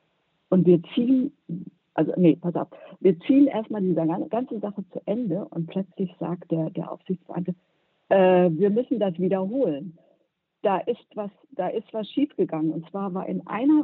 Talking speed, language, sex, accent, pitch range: 155 wpm, German, female, German, 170-205 Hz